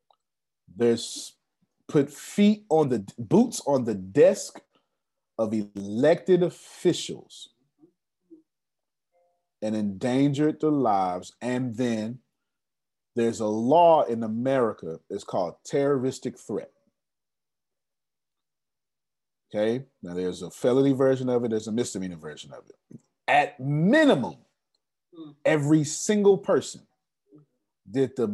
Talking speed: 100 wpm